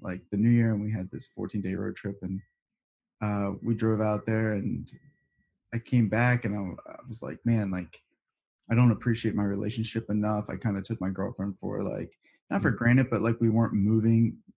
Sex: male